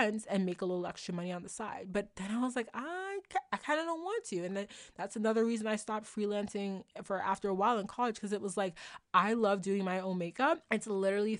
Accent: American